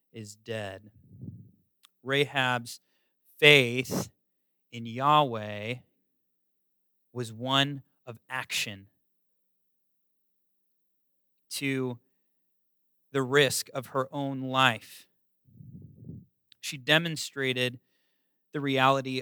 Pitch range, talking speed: 110-145 Hz, 65 wpm